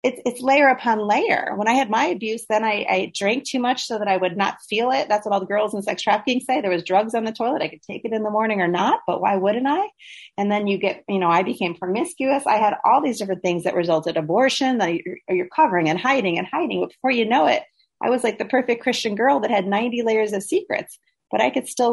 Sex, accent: female, American